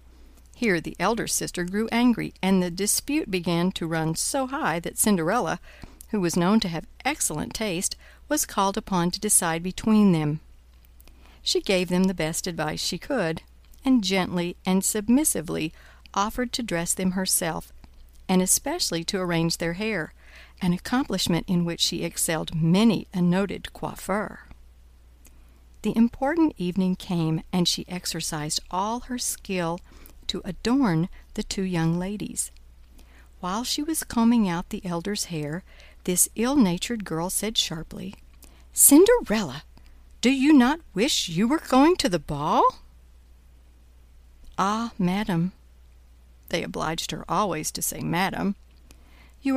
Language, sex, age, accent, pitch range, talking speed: English, female, 60-79, American, 150-215 Hz, 135 wpm